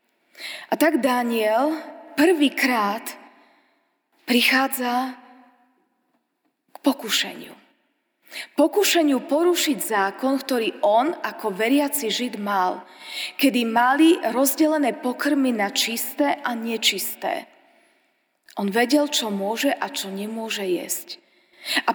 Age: 20-39